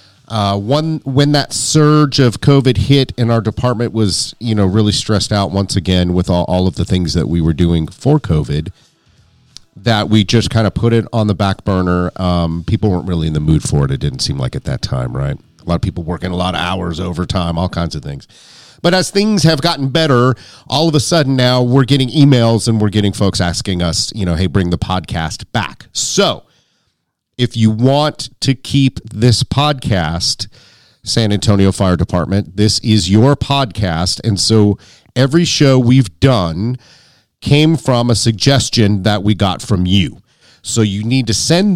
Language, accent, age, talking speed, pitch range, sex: English, American, 40-59, 195 wpm, 95-125 Hz, male